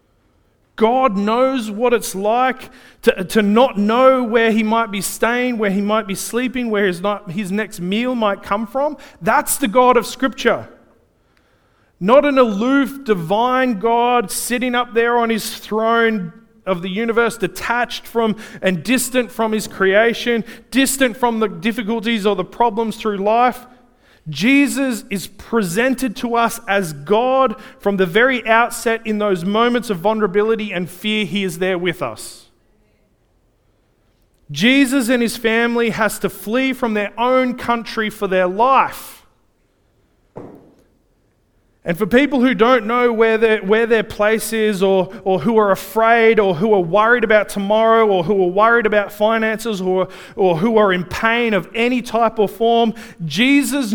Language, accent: English, Australian